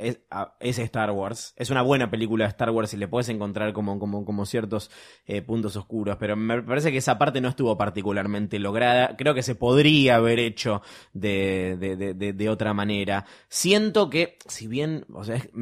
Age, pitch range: 20-39, 105-130 Hz